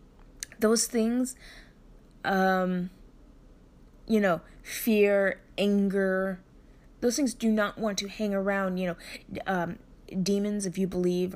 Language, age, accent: English, 20-39, American